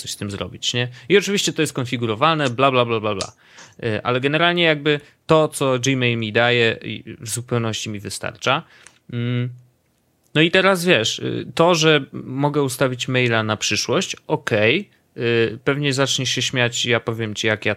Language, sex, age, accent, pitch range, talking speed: Polish, male, 30-49, native, 115-150 Hz, 160 wpm